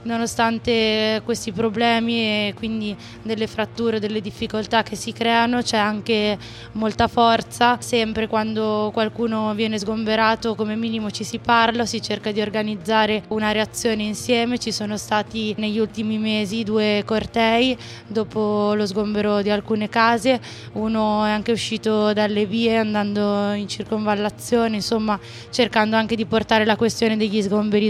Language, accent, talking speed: Italian, native, 140 wpm